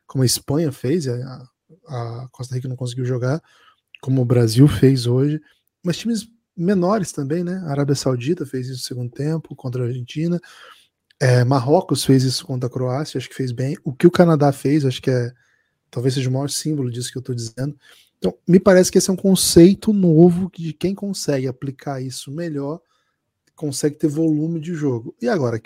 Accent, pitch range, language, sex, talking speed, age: Brazilian, 130-170 Hz, Portuguese, male, 190 wpm, 20-39